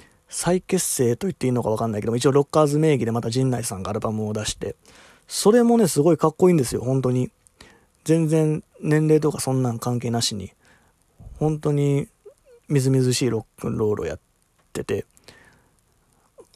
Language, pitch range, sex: Japanese, 120-155 Hz, male